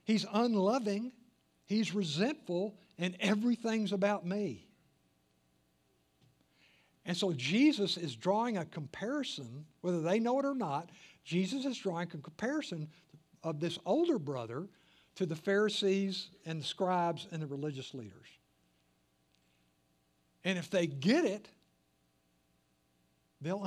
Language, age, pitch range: English, 60-79, 130-205 Hz